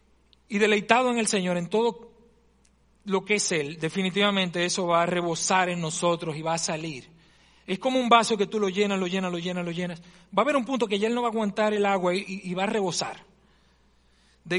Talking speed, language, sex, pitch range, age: 230 wpm, Spanish, male, 165-205 Hz, 40-59